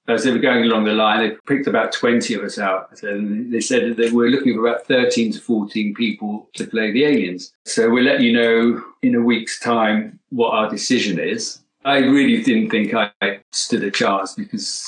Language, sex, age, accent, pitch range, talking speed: English, male, 50-69, British, 115-150 Hz, 210 wpm